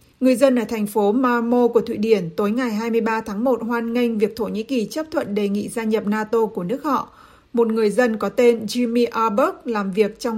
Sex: female